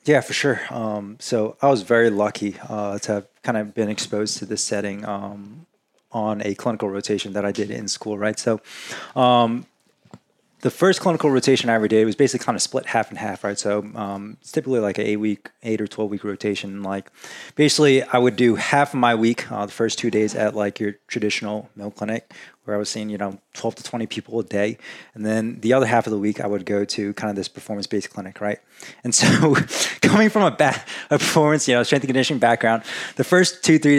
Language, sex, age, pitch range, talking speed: English, male, 20-39, 105-130 Hz, 230 wpm